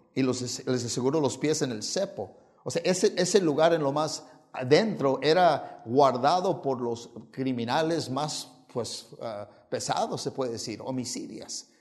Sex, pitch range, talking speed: male, 130-160 Hz, 150 wpm